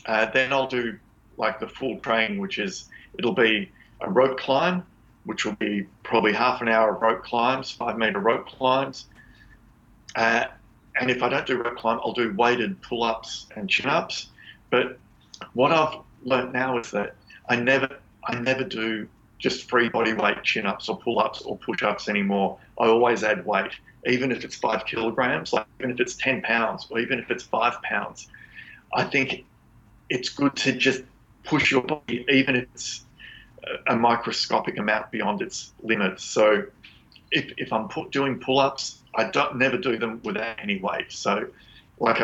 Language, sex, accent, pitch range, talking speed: English, male, Australian, 115-135 Hz, 170 wpm